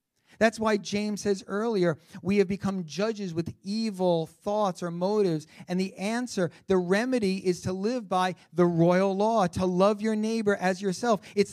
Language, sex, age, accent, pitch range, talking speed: English, male, 40-59, American, 135-205 Hz, 170 wpm